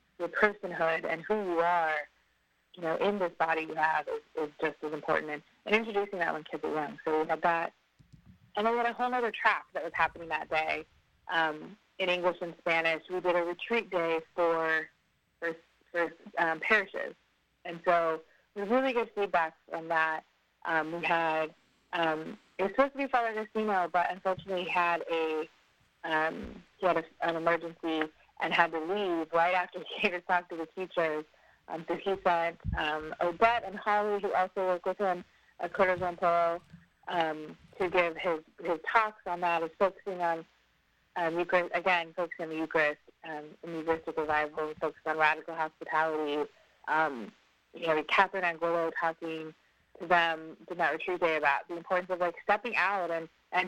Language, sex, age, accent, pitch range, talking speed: English, female, 30-49, American, 160-185 Hz, 180 wpm